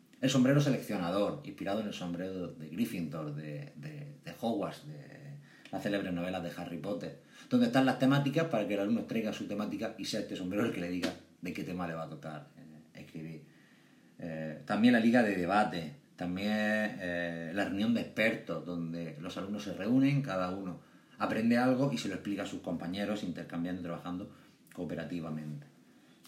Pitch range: 85-135 Hz